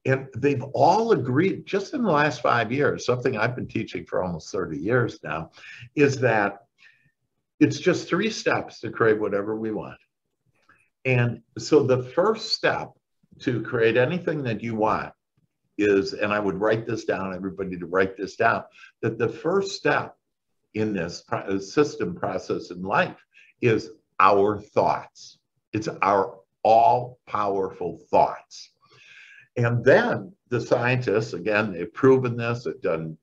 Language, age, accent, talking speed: English, 60-79, American, 145 wpm